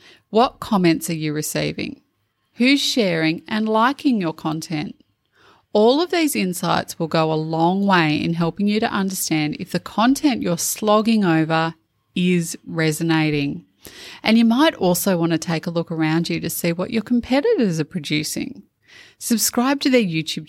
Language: English